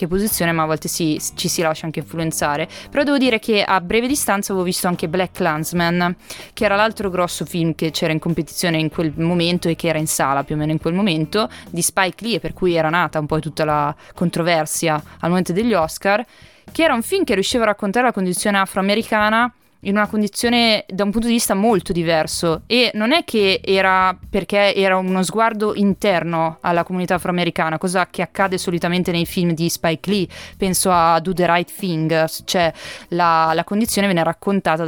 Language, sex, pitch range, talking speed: Italian, female, 165-210 Hz, 200 wpm